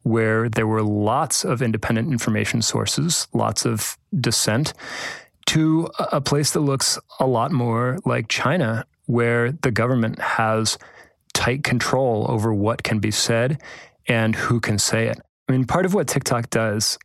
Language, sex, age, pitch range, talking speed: English, male, 30-49, 115-140 Hz, 155 wpm